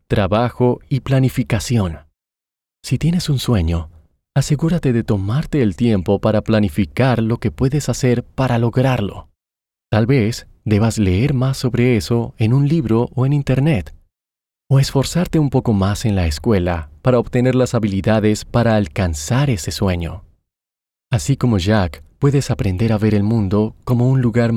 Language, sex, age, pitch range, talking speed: Spanish, male, 30-49, 95-125 Hz, 150 wpm